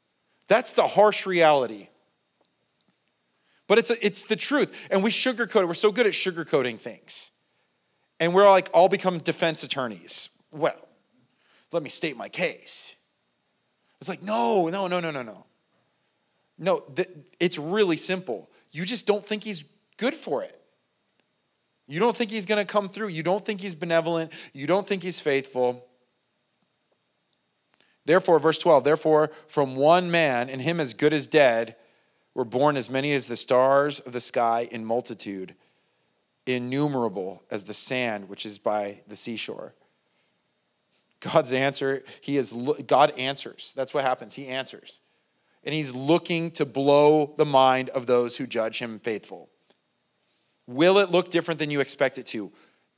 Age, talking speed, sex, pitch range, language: 30-49, 155 wpm, male, 125-185 Hz, English